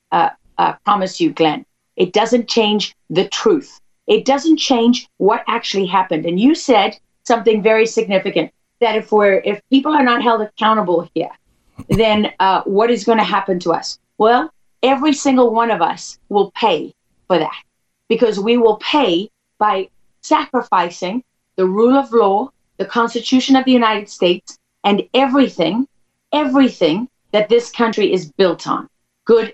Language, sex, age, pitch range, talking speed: English, female, 40-59, 200-255 Hz, 155 wpm